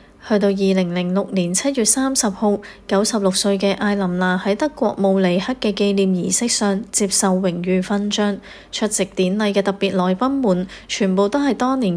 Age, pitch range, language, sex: 20-39, 190-215 Hz, Chinese, female